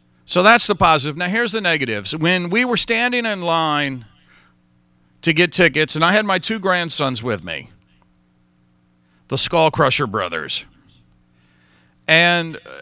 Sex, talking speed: male, 140 wpm